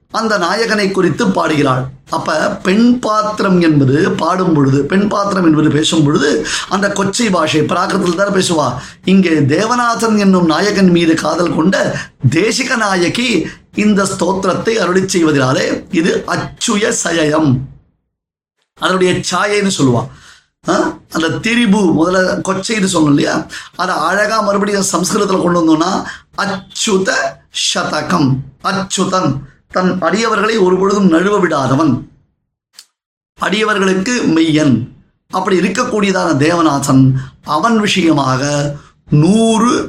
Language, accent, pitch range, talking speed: Tamil, native, 155-200 Hz, 100 wpm